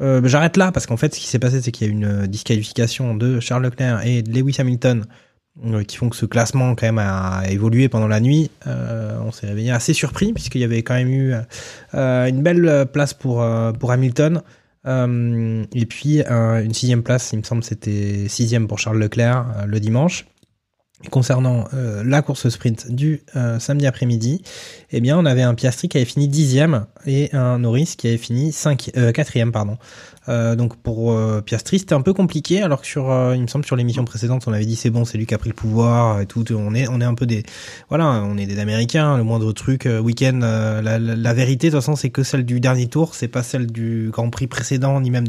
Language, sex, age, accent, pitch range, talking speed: French, male, 20-39, French, 115-135 Hz, 235 wpm